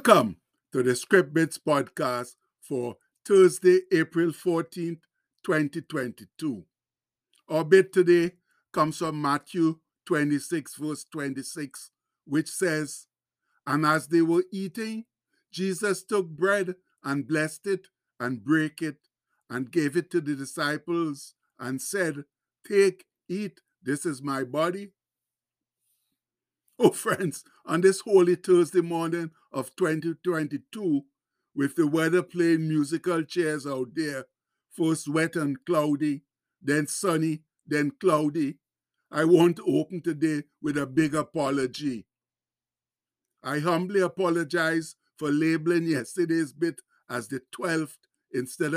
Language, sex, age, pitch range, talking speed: English, male, 60-79, 145-175 Hz, 115 wpm